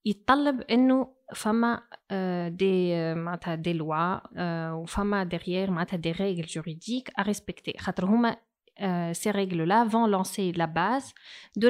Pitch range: 180-225 Hz